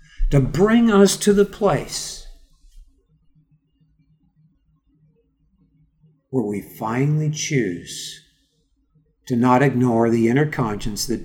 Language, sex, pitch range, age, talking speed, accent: English, male, 115-155 Hz, 60-79, 90 wpm, American